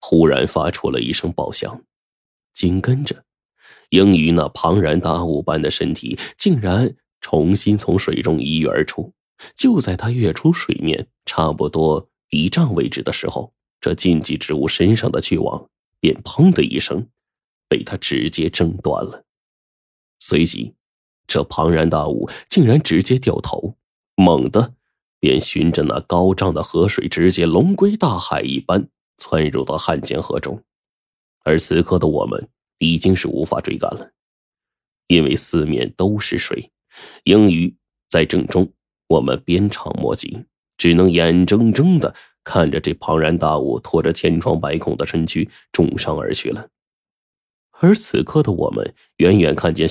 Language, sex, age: Chinese, male, 20-39